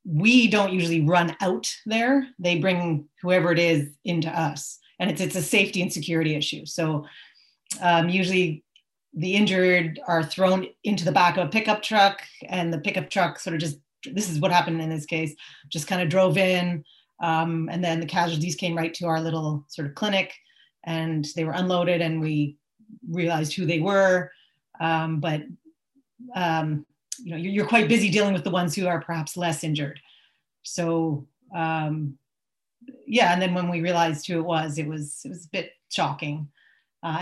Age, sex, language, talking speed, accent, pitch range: 30-49, female, English, 180 wpm, American, 160-185 Hz